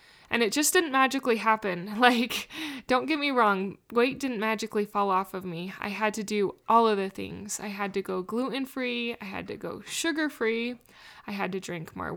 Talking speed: 200 wpm